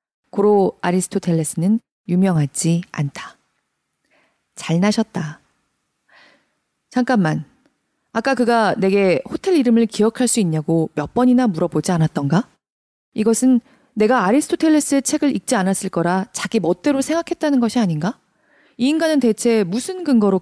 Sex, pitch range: female, 175-250 Hz